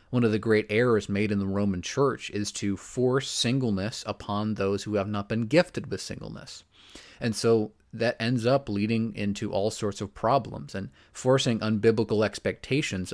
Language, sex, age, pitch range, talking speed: English, male, 30-49, 100-120 Hz, 175 wpm